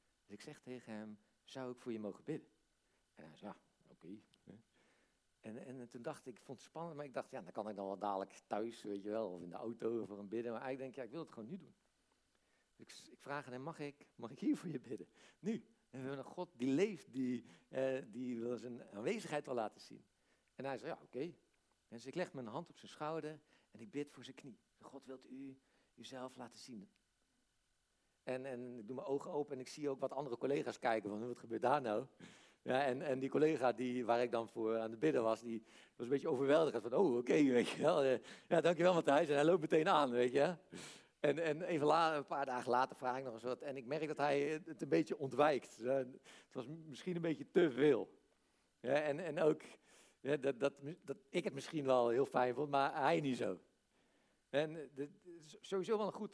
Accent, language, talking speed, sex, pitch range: Dutch, Dutch, 240 wpm, male, 120-150 Hz